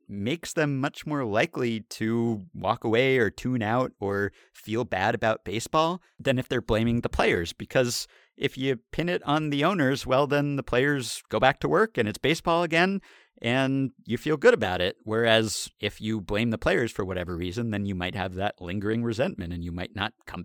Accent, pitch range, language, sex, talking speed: American, 95-120 Hz, English, male, 200 wpm